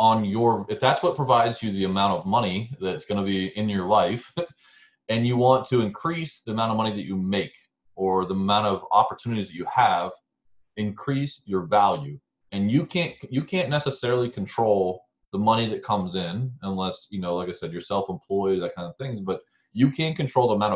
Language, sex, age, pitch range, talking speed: English, male, 20-39, 95-130 Hz, 200 wpm